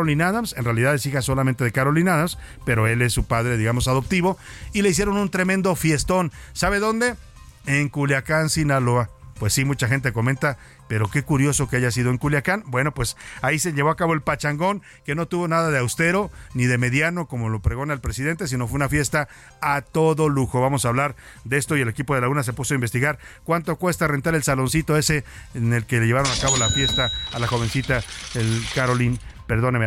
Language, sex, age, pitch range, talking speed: Spanish, male, 50-69, 125-175 Hz, 210 wpm